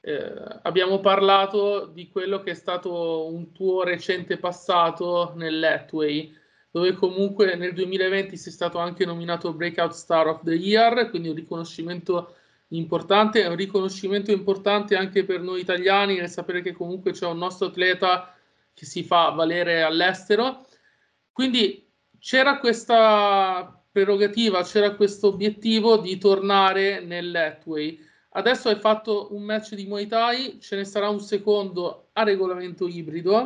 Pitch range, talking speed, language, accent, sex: 180-215 Hz, 135 wpm, Italian, native, male